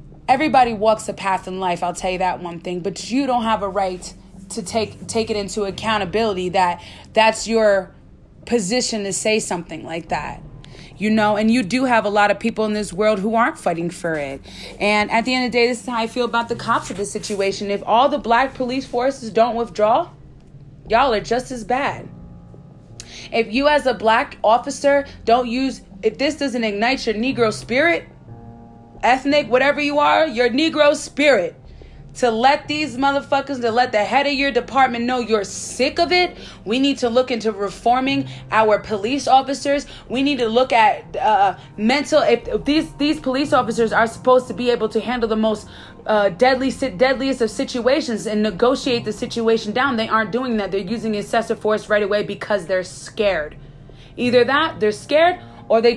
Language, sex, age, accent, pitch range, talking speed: English, female, 30-49, American, 200-260 Hz, 195 wpm